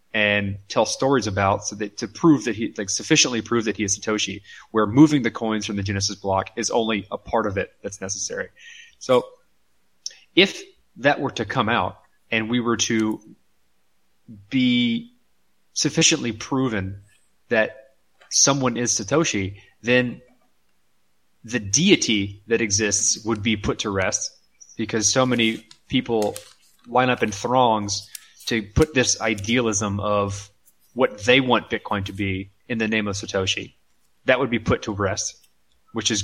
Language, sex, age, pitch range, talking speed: English, male, 20-39, 100-125 Hz, 155 wpm